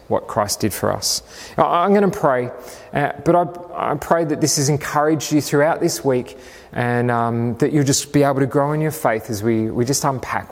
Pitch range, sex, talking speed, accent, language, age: 120-150 Hz, male, 200 wpm, Australian, English, 30-49